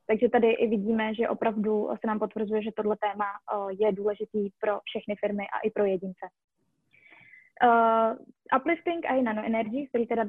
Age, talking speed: 20-39, 155 wpm